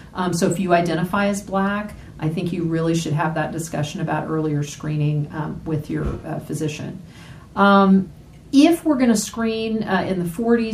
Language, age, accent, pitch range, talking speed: English, 40-59, American, 165-205 Hz, 175 wpm